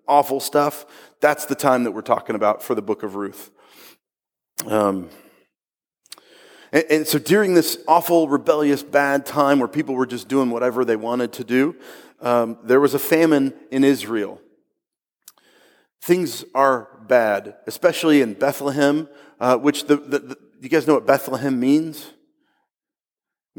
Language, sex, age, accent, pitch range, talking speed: English, male, 30-49, American, 125-150 Hz, 150 wpm